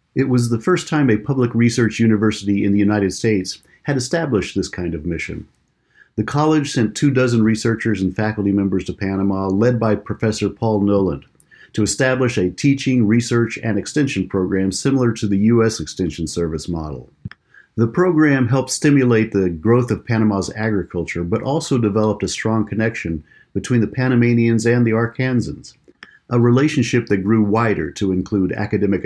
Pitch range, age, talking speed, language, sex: 95-120 Hz, 50-69, 165 wpm, English, male